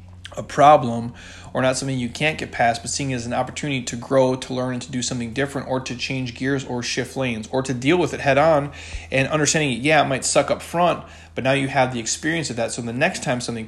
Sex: male